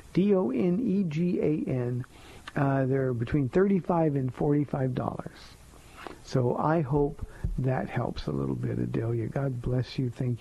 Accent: American